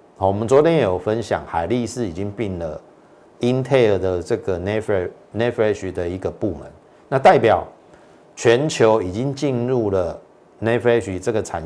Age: 50-69